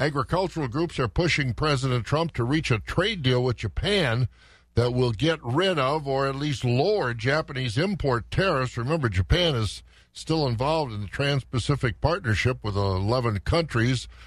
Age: 60-79